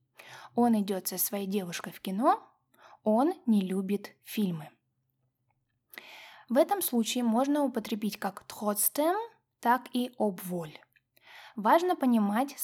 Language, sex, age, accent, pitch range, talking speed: Russian, female, 20-39, native, 195-280 Hz, 110 wpm